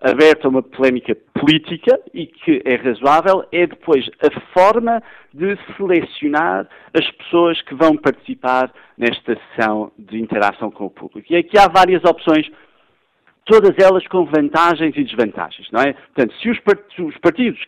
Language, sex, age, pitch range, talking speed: Portuguese, male, 50-69, 125-190 Hz, 150 wpm